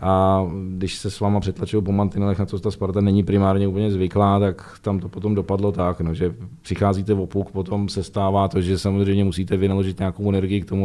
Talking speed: 215 wpm